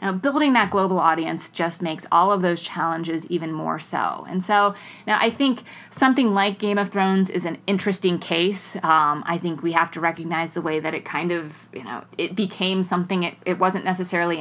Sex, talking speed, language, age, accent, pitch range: female, 210 wpm, English, 30-49, American, 170-205 Hz